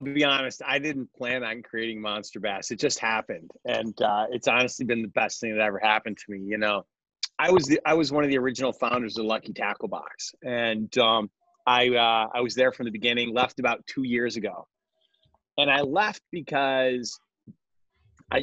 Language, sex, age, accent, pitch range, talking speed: English, male, 30-49, American, 120-160 Hz, 200 wpm